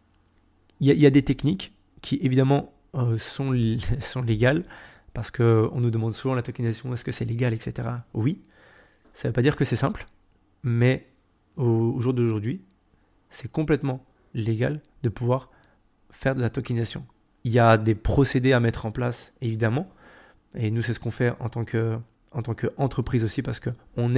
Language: French